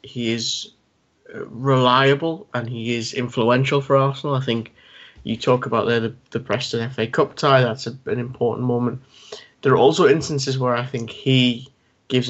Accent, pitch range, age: British, 120-140 Hz, 20-39